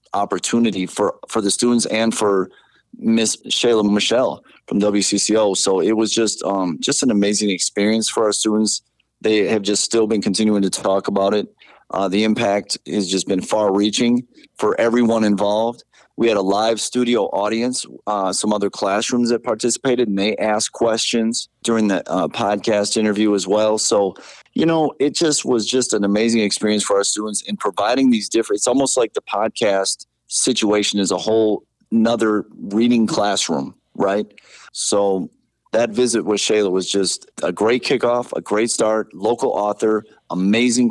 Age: 30-49